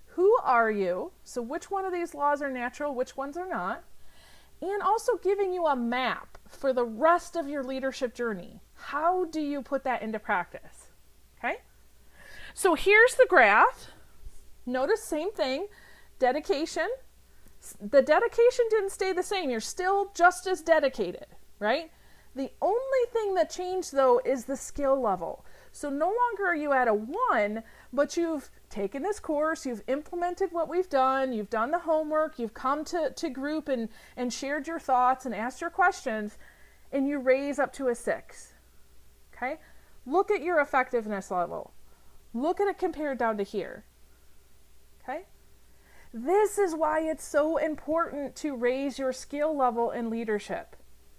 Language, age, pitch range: English, 40-59, 245-345 Hz